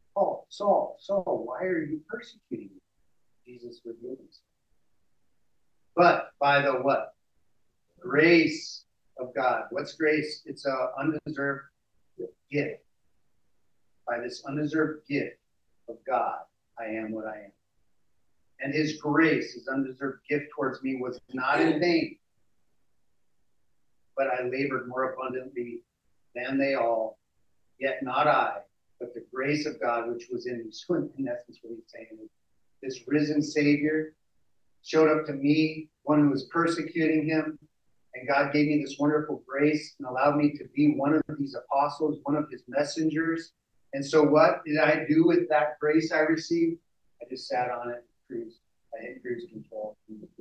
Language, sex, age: English, male, 40-59